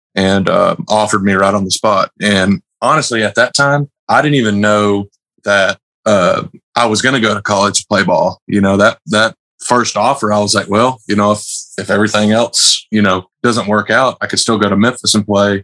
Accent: American